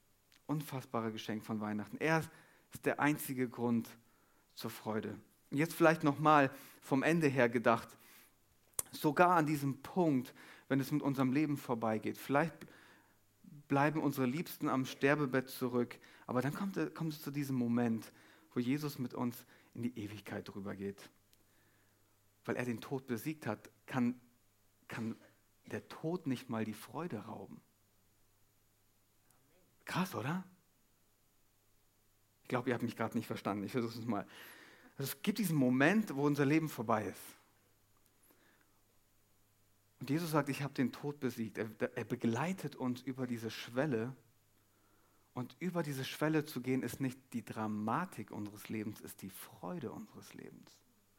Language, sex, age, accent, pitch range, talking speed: German, male, 40-59, German, 105-140 Hz, 140 wpm